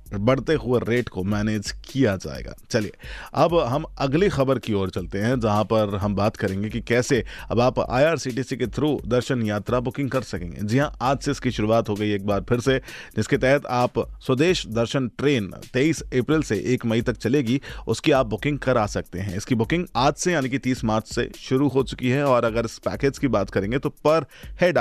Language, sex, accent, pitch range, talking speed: Hindi, male, native, 110-145 Hz, 210 wpm